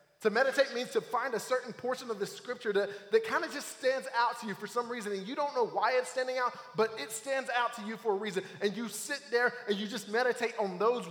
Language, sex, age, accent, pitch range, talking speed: English, male, 20-39, American, 170-255 Hz, 265 wpm